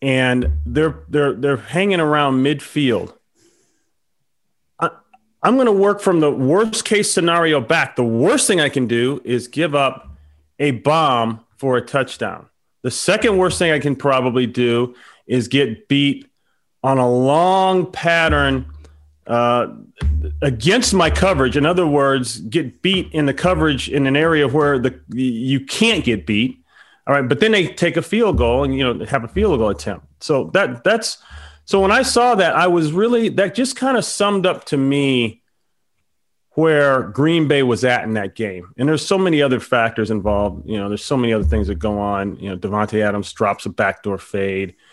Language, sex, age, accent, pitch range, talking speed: English, male, 30-49, American, 110-165 Hz, 185 wpm